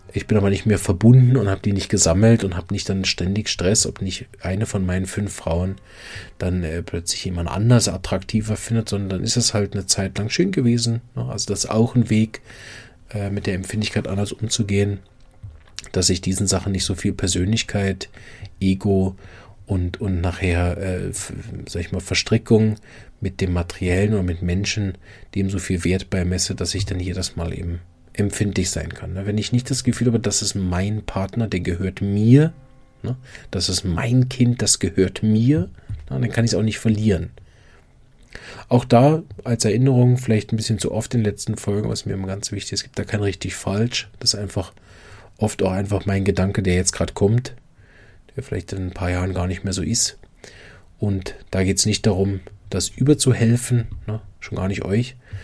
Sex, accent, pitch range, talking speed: male, German, 95-110 Hz, 190 wpm